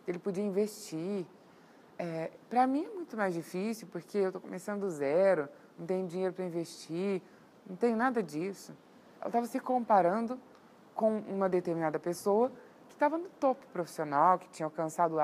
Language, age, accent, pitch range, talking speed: Portuguese, 20-39, Brazilian, 170-230 Hz, 165 wpm